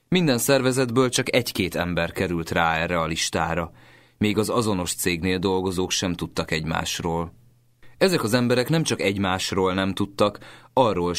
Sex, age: male, 30-49